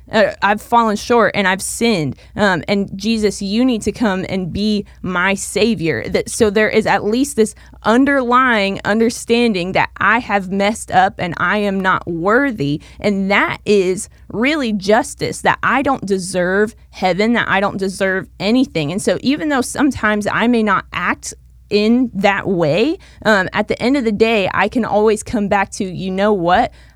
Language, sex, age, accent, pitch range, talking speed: English, female, 20-39, American, 195-235 Hz, 180 wpm